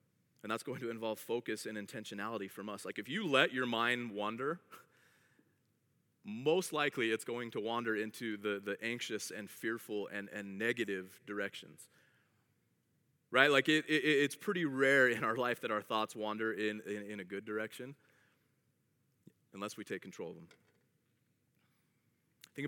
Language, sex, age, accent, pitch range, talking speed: English, male, 30-49, American, 115-155 Hz, 160 wpm